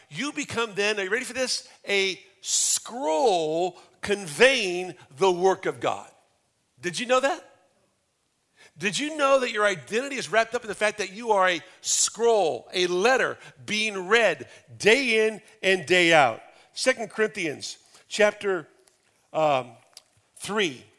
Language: English